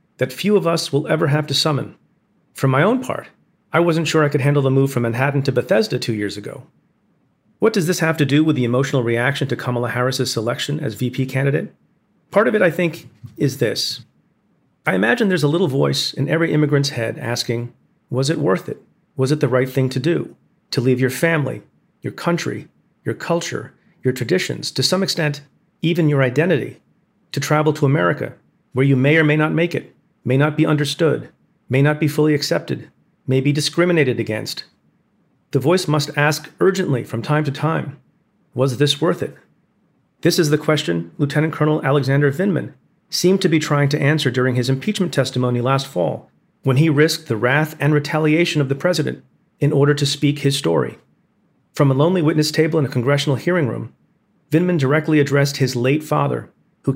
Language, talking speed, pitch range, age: English, 190 wpm, 130-160 Hz, 40-59